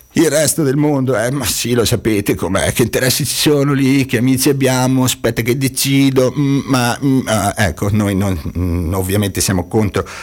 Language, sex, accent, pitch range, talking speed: Italian, male, native, 95-130 Hz, 170 wpm